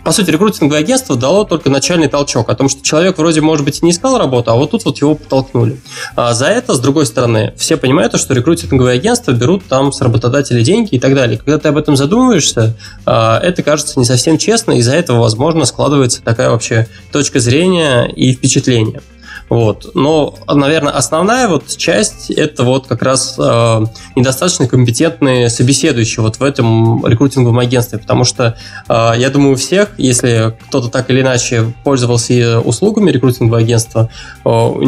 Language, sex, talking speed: Russian, male, 170 wpm